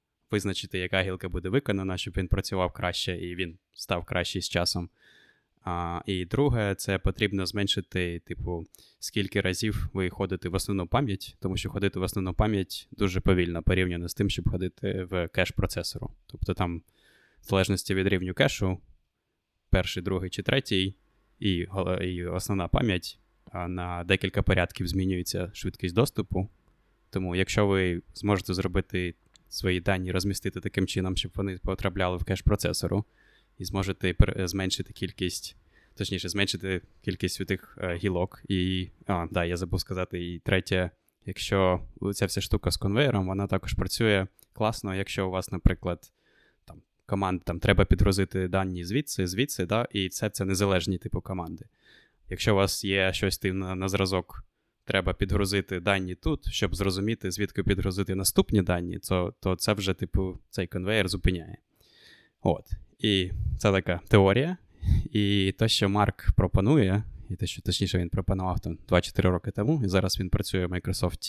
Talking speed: 150 wpm